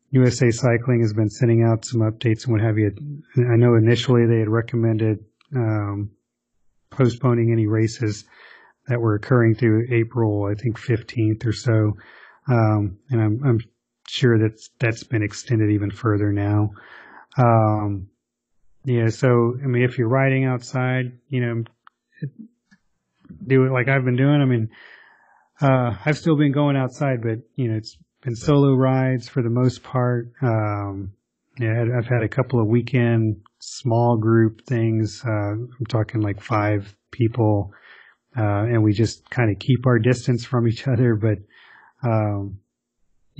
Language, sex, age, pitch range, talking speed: English, male, 30-49, 110-125 Hz, 155 wpm